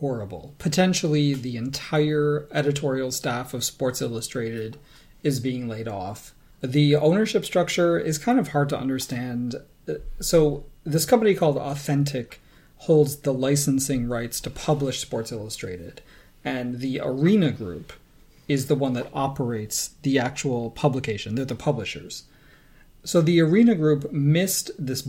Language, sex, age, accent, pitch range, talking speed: English, male, 40-59, American, 130-155 Hz, 135 wpm